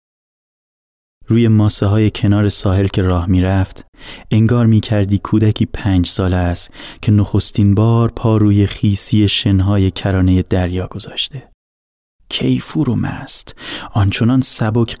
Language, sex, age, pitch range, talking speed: Persian, male, 30-49, 95-115 Hz, 110 wpm